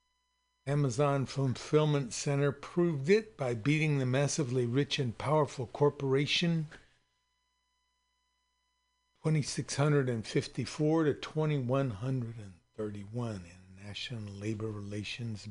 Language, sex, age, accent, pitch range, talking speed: English, male, 60-79, American, 115-155 Hz, 75 wpm